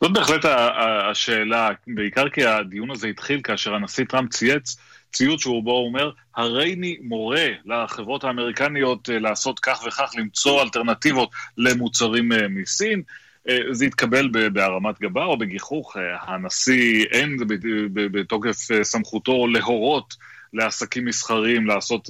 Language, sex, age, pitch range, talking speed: Hebrew, male, 30-49, 105-130 Hz, 120 wpm